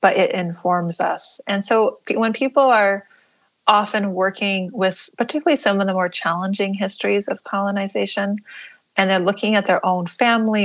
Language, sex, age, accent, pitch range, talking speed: English, female, 30-49, American, 175-210 Hz, 160 wpm